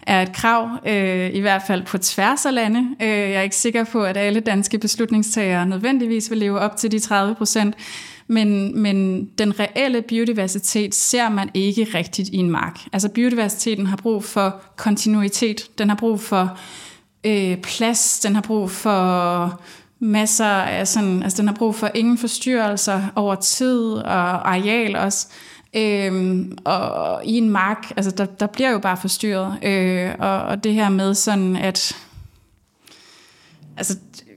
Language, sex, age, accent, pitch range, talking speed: Danish, female, 20-39, native, 190-220 Hz, 155 wpm